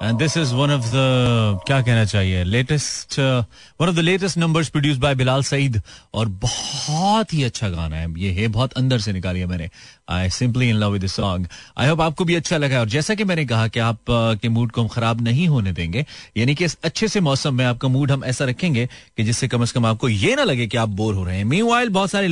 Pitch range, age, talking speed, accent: 115-145 Hz, 30-49, 245 wpm, native